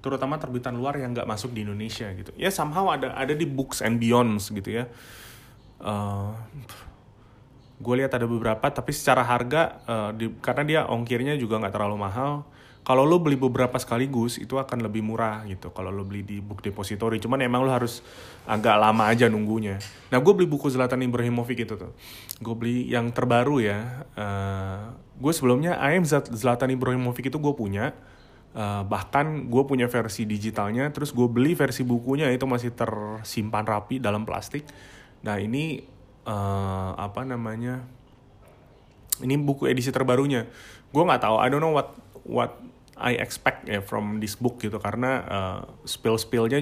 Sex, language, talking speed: male, Indonesian, 165 wpm